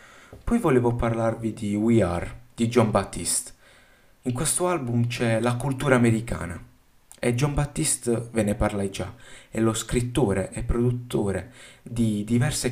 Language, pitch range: Italian, 105-130 Hz